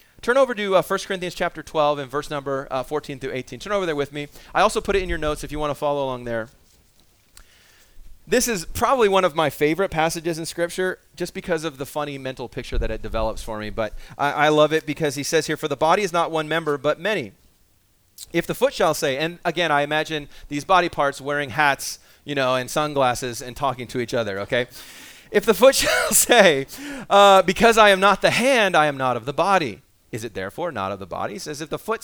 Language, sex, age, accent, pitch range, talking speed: English, male, 30-49, American, 135-190 Hz, 240 wpm